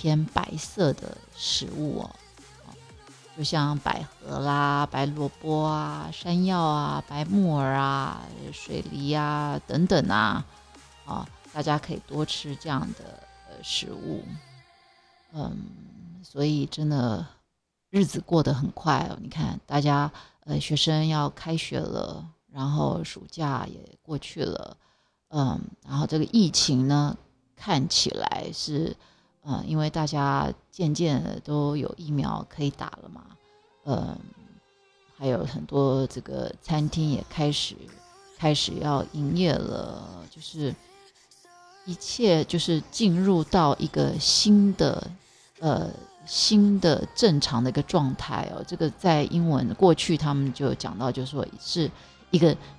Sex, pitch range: female, 145-185 Hz